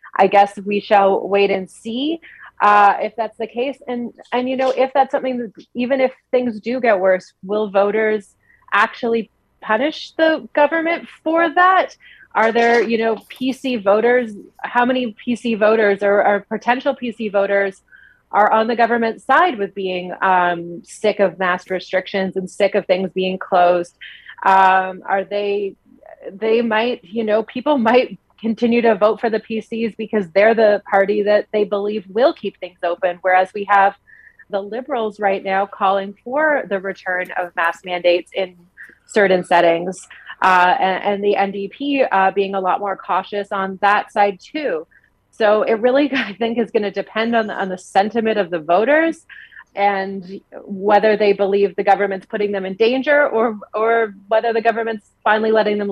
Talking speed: 170 wpm